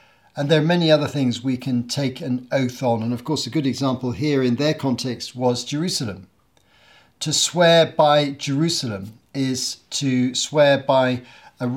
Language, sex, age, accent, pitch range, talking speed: English, male, 50-69, British, 125-145 Hz, 170 wpm